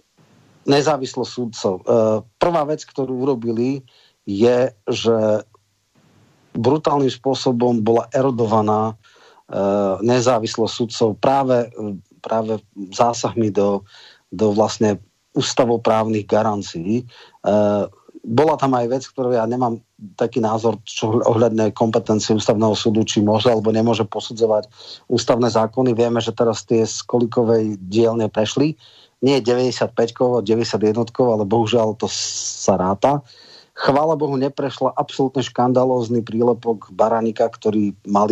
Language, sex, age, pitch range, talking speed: Slovak, male, 40-59, 110-125 Hz, 105 wpm